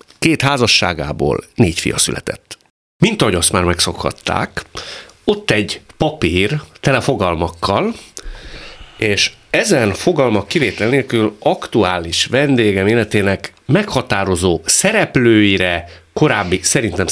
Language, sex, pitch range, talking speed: Hungarian, male, 90-125 Hz, 95 wpm